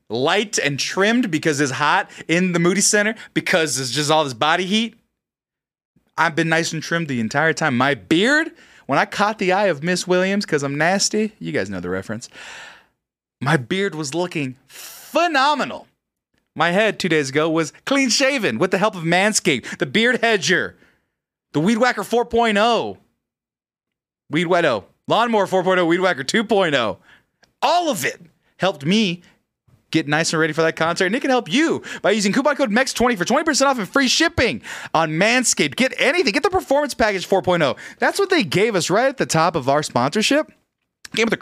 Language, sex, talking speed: English, male, 185 wpm